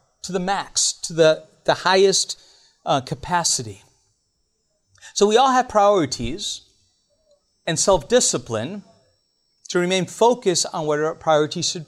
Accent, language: American, English